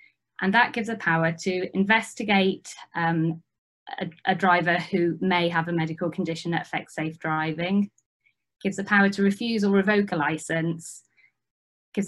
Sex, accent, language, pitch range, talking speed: female, British, English, 165-195 Hz, 155 wpm